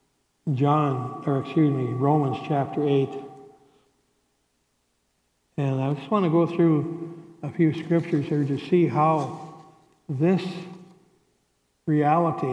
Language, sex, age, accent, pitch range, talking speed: English, male, 60-79, American, 135-155 Hz, 110 wpm